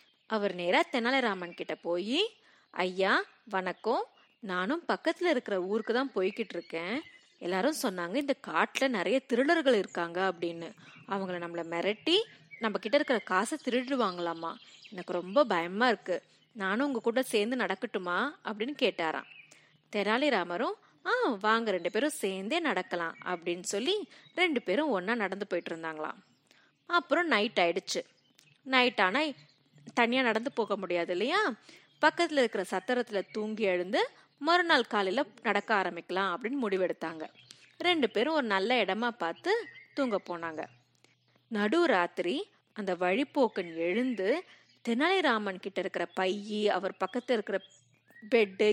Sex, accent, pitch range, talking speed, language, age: female, native, 185-275 Hz, 100 wpm, Tamil, 20-39